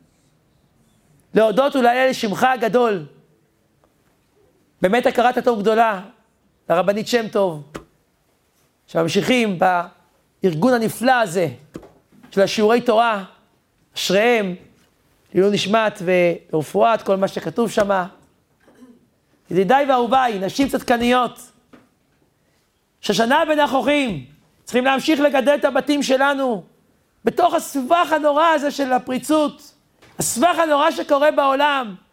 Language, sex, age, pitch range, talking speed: Hebrew, male, 40-59, 195-285 Hz, 90 wpm